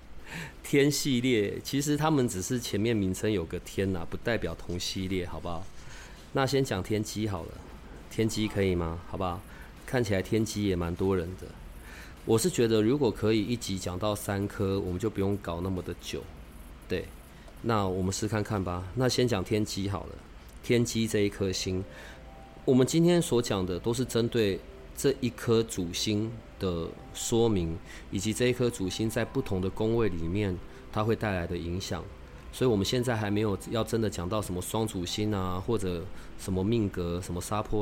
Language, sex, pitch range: Chinese, male, 90-115 Hz